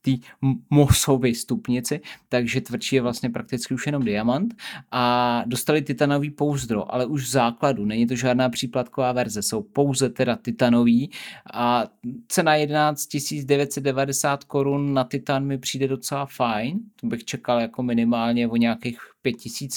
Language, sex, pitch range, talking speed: Czech, male, 120-140 Hz, 145 wpm